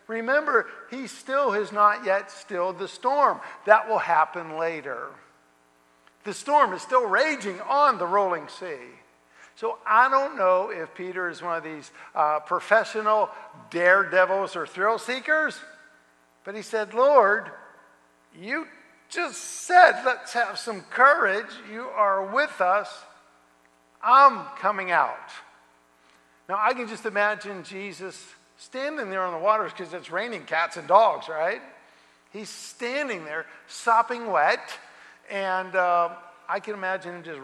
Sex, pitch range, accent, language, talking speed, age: male, 155-220 Hz, American, English, 140 wpm, 50-69